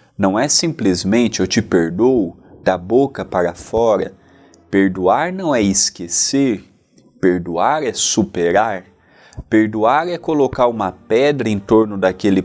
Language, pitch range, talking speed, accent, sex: Portuguese, 95-140 Hz, 120 wpm, Brazilian, male